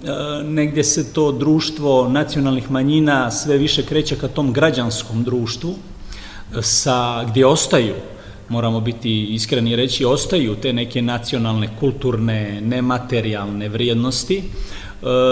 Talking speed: 100 wpm